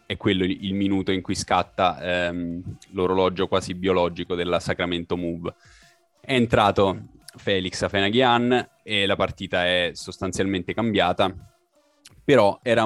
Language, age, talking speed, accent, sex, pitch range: Italian, 20-39, 120 wpm, native, male, 85-95 Hz